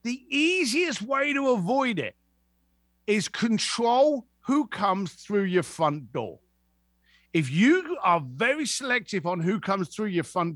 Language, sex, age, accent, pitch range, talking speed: English, male, 50-69, British, 140-225 Hz, 140 wpm